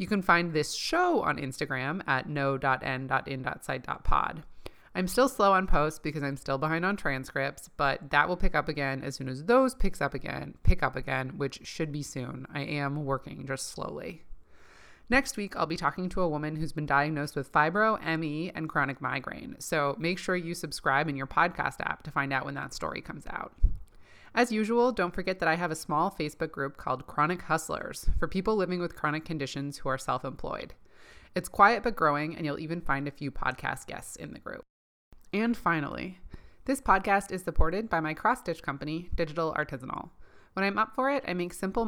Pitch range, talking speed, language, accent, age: 140-185 Hz, 195 wpm, English, American, 20-39